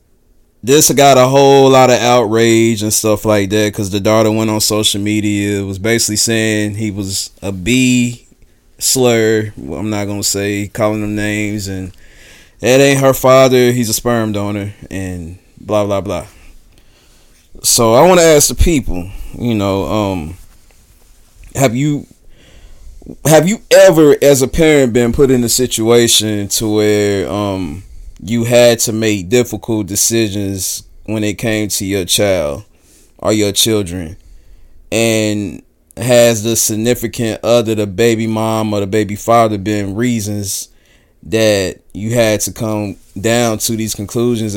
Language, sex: English, male